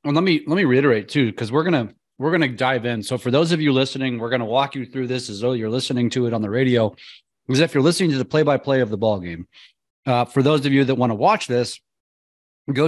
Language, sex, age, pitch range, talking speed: English, male, 30-49, 115-145 Hz, 275 wpm